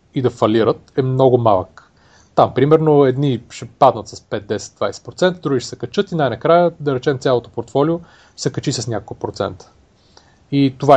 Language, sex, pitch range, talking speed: Bulgarian, male, 120-145 Hz, 170 wpm